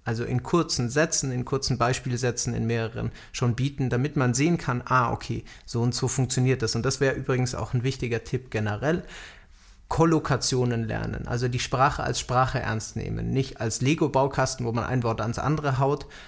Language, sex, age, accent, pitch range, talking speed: German, male, 30-49, German, 115-135 Hz, 185 wpm